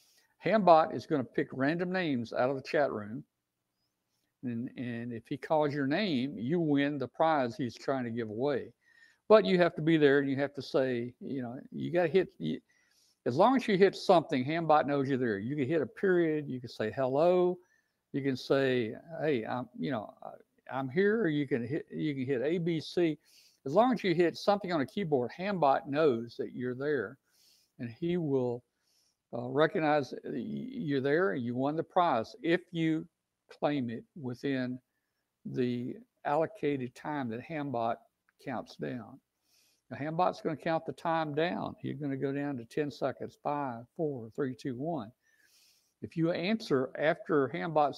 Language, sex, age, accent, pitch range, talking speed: English, male, 60-79, American, 125-165 Hz, 185 wpm